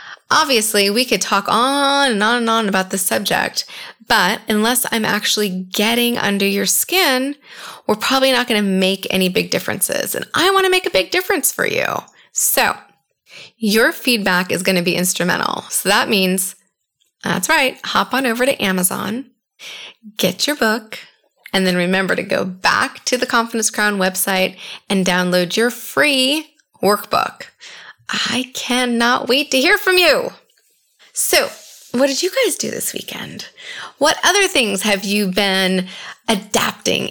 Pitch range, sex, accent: 195-265 Hz, female, American